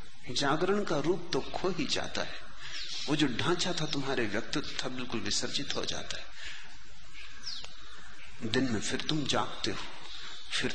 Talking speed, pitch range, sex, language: 150 wpm, 120-155 Hz, male, Hindi